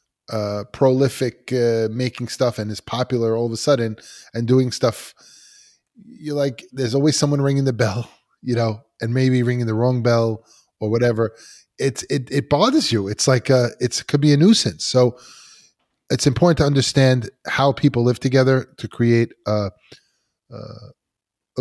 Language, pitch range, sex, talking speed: English, 115-135 Hz, male, 165 wpm